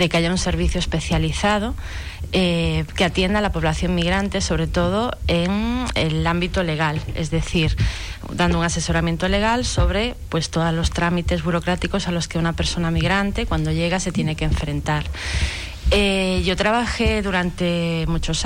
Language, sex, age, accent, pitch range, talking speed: Spanish, female, 30-49, Spanish, 155-185 Hz, 155 wpm